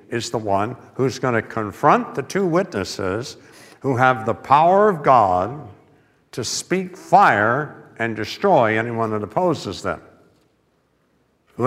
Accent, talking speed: American, 135 wpm